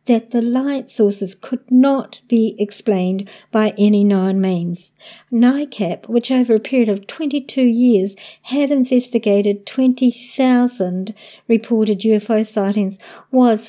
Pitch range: 205-240 Hz